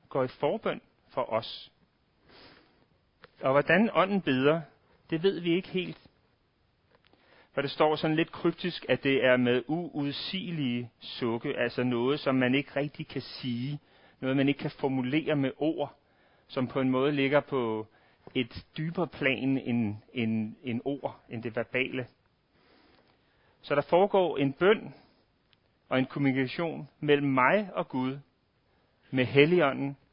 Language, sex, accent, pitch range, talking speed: Danish, male, native, 125-155 Hz, 140 wpm